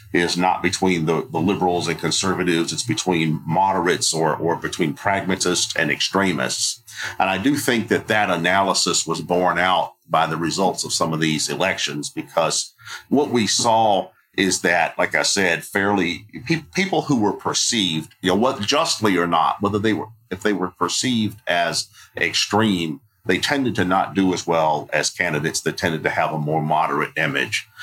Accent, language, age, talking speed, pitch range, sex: American, English, 50-69, 175 wpm, 80-100 Hz, male